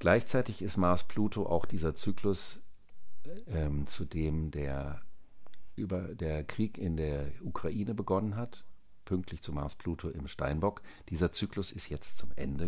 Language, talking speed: German, 135 wpm